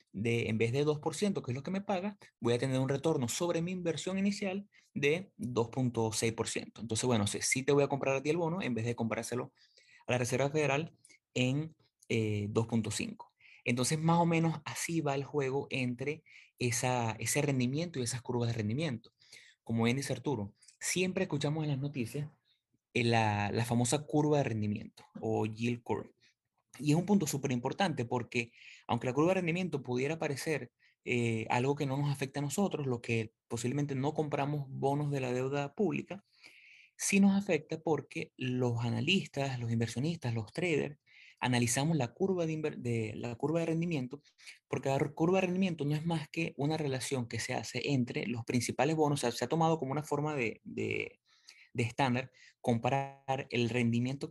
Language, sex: Spanish, male